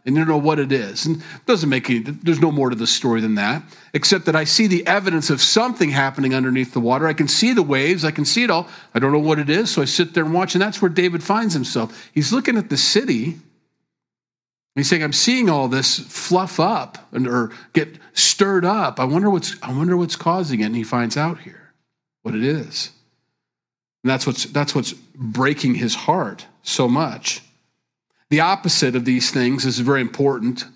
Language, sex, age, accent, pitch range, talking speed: English, male, 40-59, American, 125-175 Hz, 220 wpm